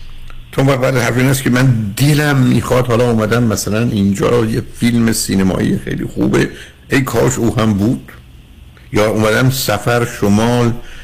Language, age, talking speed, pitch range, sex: Persian, 60-79, 140 wpm, 90-125 Hz, male